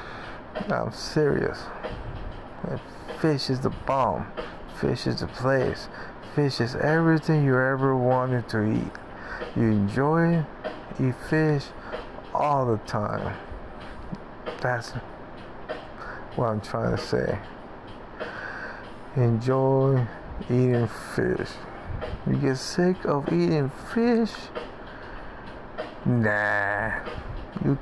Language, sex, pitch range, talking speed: English, male, 120-150 Hz, 95 wpm